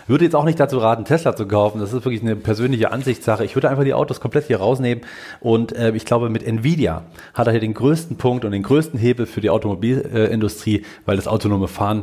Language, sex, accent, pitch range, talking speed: German, male, German, 105-130 Hz, 235 wpm